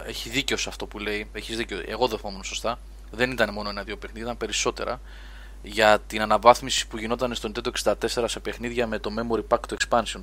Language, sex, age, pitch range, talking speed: Greek, male, 20-39, 100-120 Hz, 200 wpm